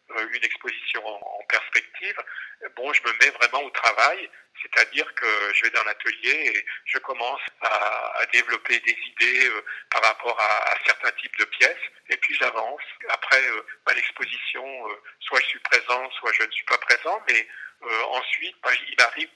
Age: 50-69